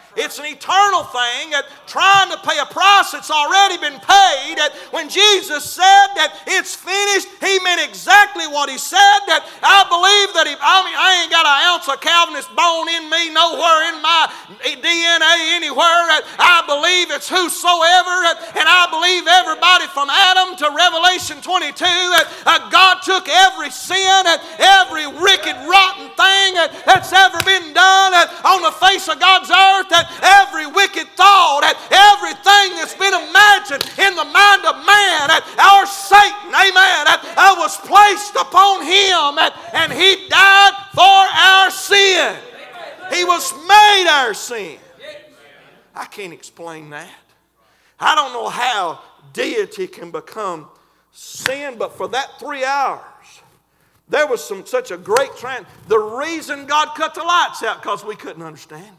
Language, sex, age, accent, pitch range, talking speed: English, male, 40-59, American, 305-385 Hz, 160 wpm